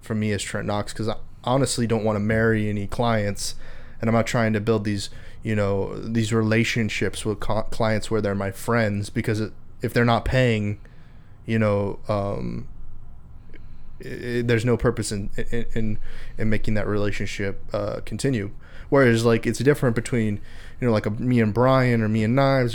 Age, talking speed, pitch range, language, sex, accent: 20-39, 170 wpm, 105-120 Hz, English, male, American